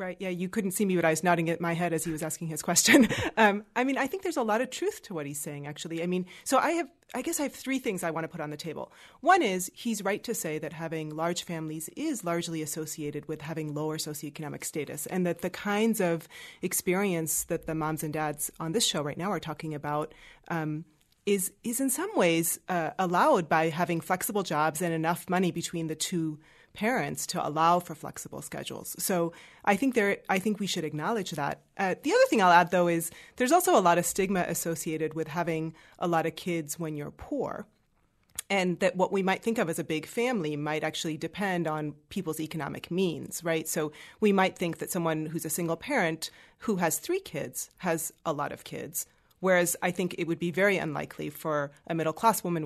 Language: English